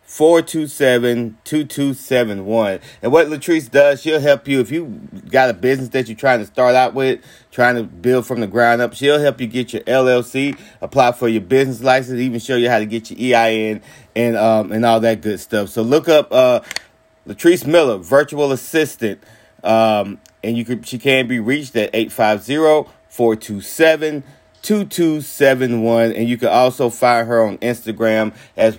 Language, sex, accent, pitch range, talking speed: English, male, American, 110-140 Hz, 170 wpm